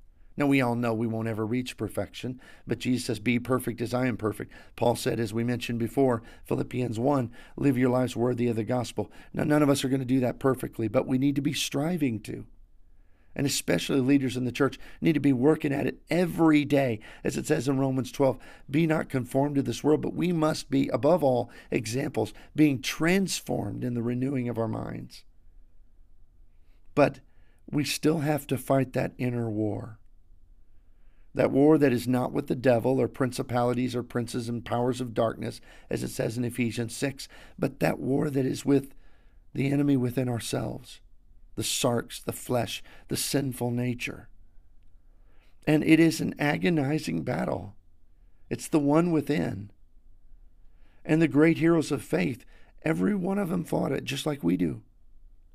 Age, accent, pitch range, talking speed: 50-69, American, 100-140 Hz, 180 wpm